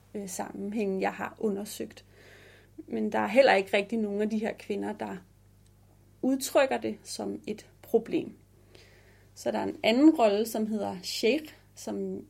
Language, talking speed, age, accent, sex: Danish, 150 wpm, 30-49, native, female